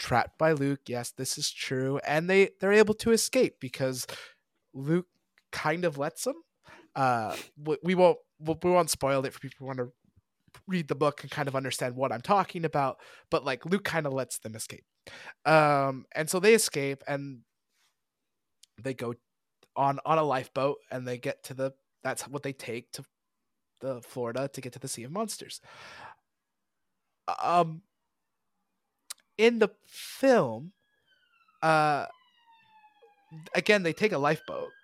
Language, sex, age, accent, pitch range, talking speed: English, male, 20-39, American, 135-195 Hz, 155 wpm